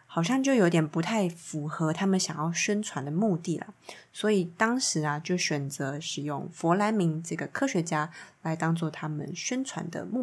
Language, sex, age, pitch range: Chinese, female, 20-39, 160-200 Hz